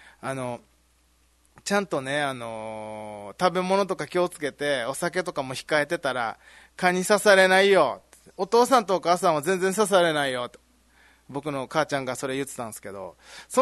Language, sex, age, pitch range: Japanese, male, 20-39, 140-205 Hz